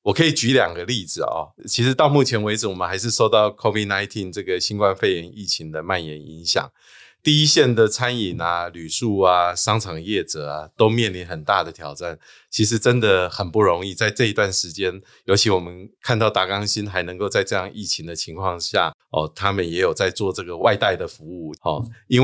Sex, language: male, Chinese